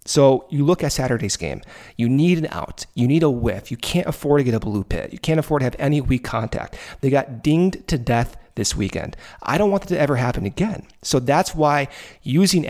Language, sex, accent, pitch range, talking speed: English, male, American, 115-150 Hz, 230 wpm